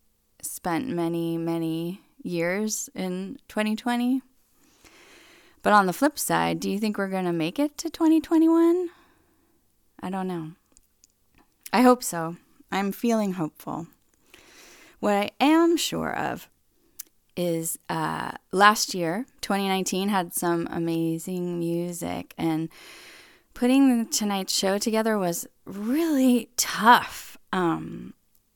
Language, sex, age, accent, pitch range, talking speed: English, female, 20-39, American, 165-225 Hz, 110 wpm